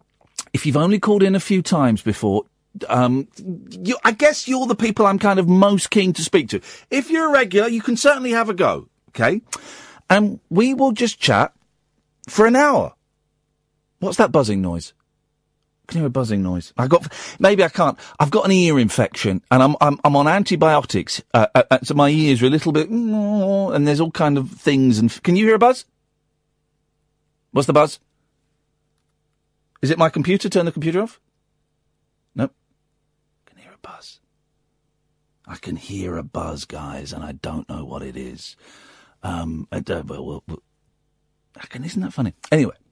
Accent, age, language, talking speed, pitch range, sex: British, 40-59, English, 180 wpm, 120-195 Hz, male